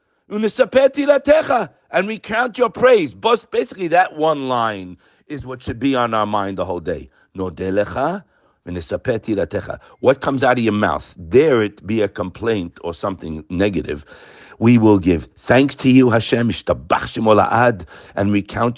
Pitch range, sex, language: 110-150 Hz, male, English